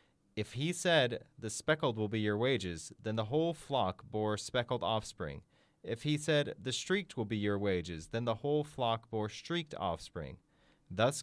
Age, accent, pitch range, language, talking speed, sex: 30-49, American, 100-135 Hz, English, 175 wpm, male